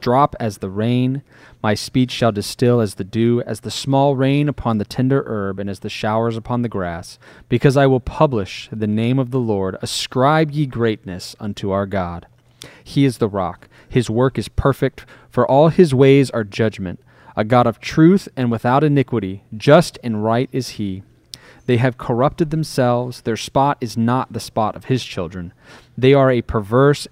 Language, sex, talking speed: English, male, 185 wpm